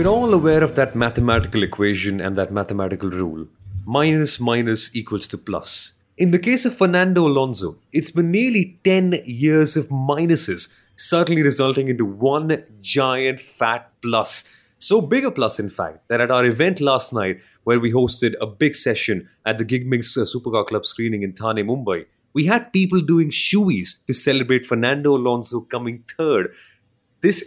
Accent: Indian